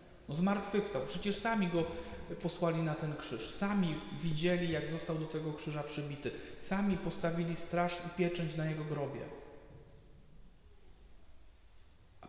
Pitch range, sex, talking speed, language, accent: 140-180 Hz, male, 125 wpm, Polish, native